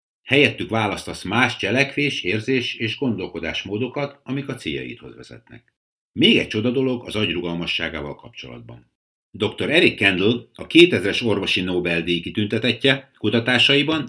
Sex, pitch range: male, 85-130 Hz